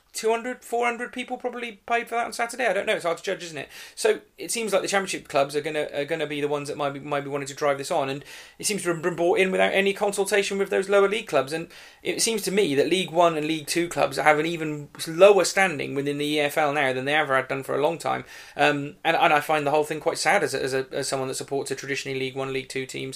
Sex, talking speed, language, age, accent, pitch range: male, 295 wpm, English, 30-49, British, 135-170 Hz